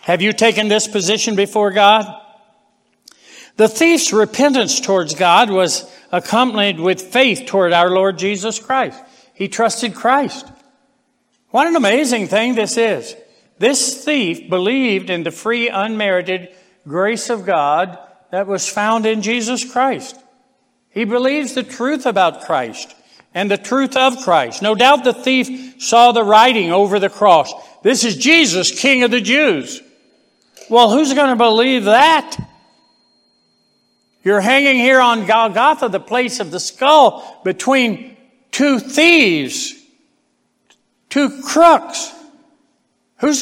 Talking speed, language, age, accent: 135 wpm, English, 60-79, American